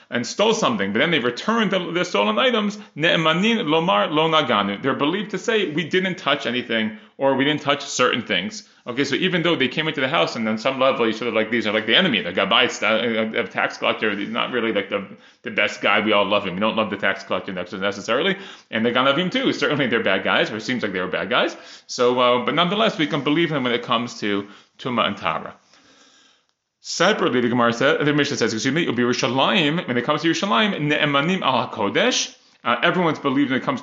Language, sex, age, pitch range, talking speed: English, male, 30-49, 120-180 Hz, 230 wpm